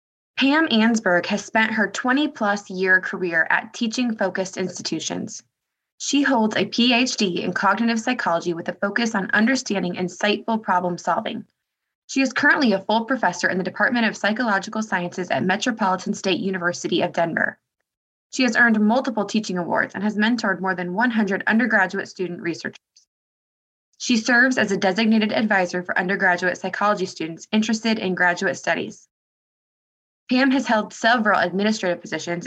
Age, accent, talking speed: 20-39, American, 150 wpm